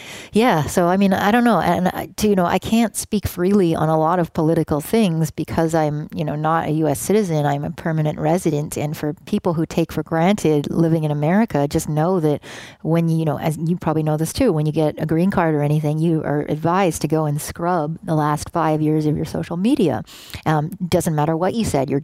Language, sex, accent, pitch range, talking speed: English, female, American, 150-175 Hz, 235 wpm